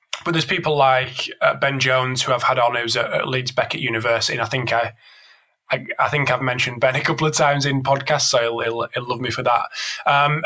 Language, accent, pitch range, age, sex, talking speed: English, British, 120-145 Hz, 20-39, male, 220 wpm